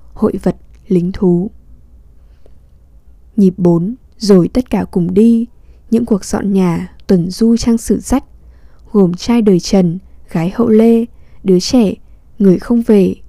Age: 10-29